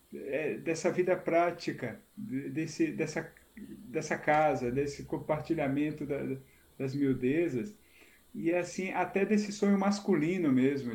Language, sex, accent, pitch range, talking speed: Portuguese, male, Brazilian, 135-180 Hz, 110 wpm